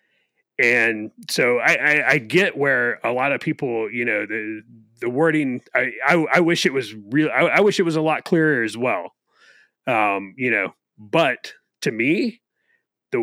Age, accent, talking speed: 30-49, American, 180 wpm